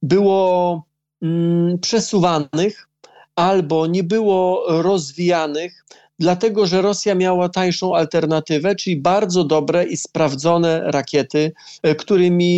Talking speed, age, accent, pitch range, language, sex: 90 wpm, 40-59, native, 150-185 Hz, Polish, male